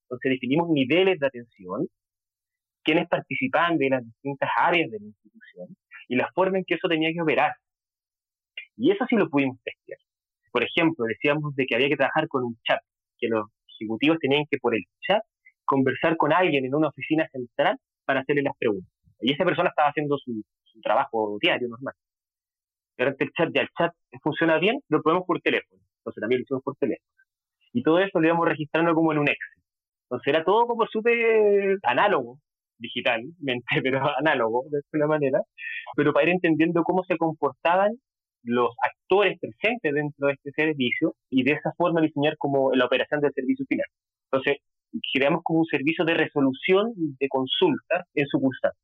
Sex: male